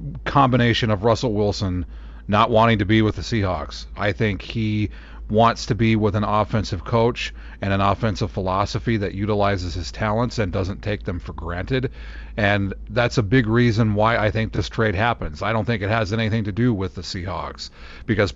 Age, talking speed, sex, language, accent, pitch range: 40-59, 190 wpm, male, English, American, 95-125 Hz